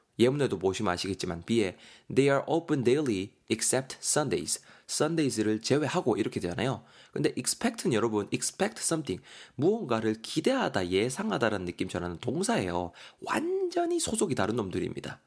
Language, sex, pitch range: Korean, male, 100-145 Hz